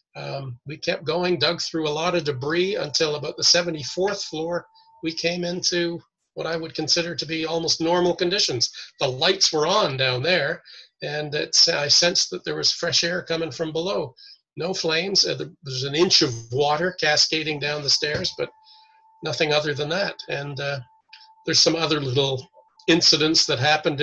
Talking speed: 175 wpm